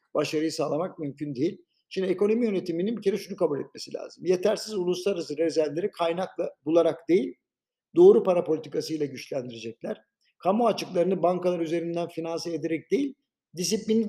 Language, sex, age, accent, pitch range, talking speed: Turkish, male, 50-69, native, 150-190 Hz, 130 wpm